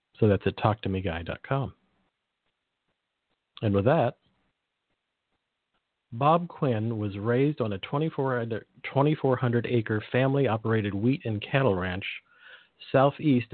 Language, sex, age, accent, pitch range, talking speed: English, male, 50-69, American, 100-125 Hz, 90 wpm